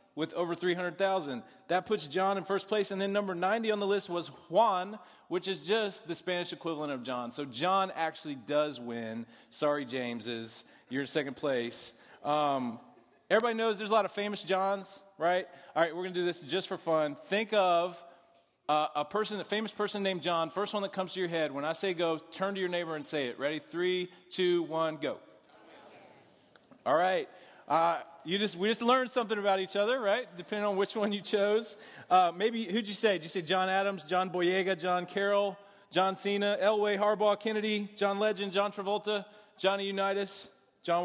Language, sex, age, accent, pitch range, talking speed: English, male, 30-49, American, 160-200 Hz, 195 wpm